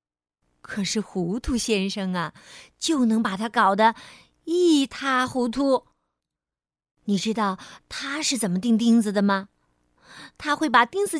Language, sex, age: Chinese, female, 30-49